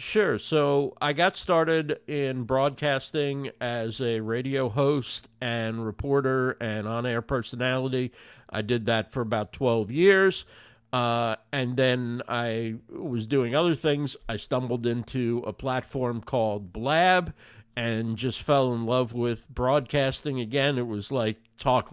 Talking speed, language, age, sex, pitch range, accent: 135 wpm, English, 50-69, male, 120-140 Hz, American